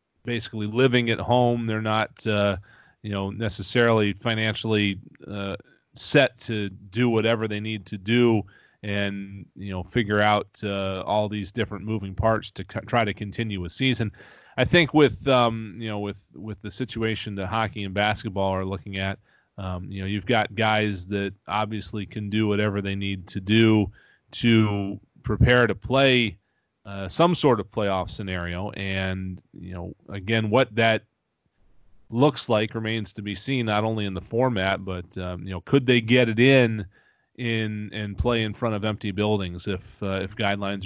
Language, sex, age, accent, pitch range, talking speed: English, male, 30-49, American, 100-115 Hz, 170 wpm